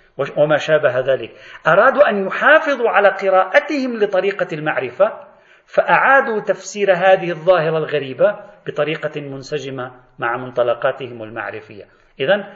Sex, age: male, 40-59